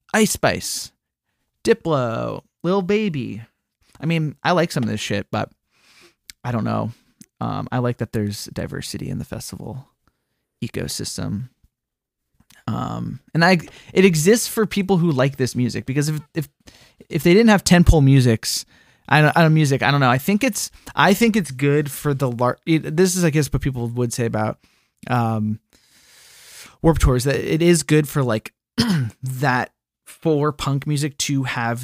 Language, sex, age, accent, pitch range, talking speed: English, male, 20-39, American, 120-155 Hz, 170 wpm